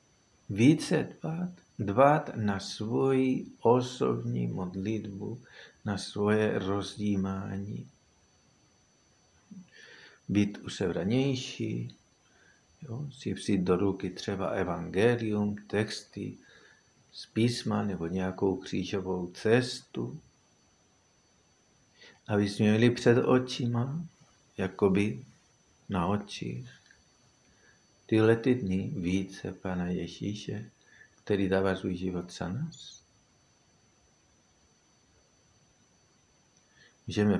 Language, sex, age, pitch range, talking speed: Czech, male, 50-69, 95-120 Hz, 70 wpm